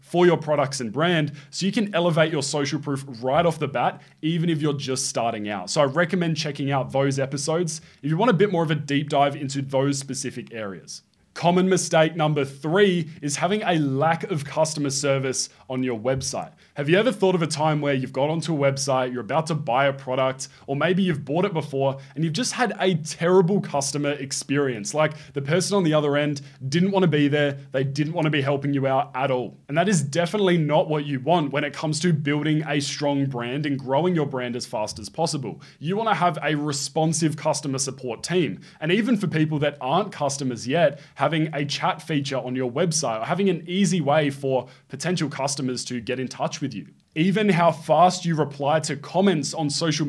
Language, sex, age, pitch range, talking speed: English, male, 20-39, 135-165 Hz, 215 wpm